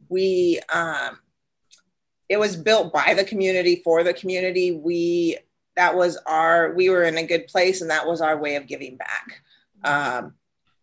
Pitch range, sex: 155-175 Hz, female